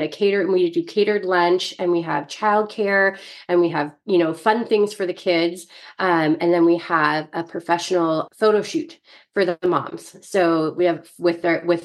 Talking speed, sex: 195 wpm, female